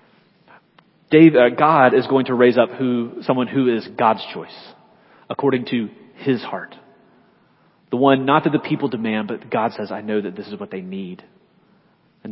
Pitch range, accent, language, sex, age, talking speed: 115-145 Hz, American, English, male, 30-49, 170 wpm